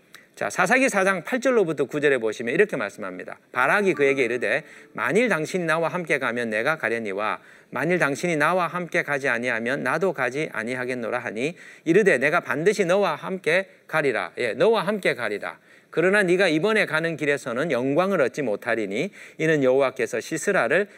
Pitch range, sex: 135-195 Hz, male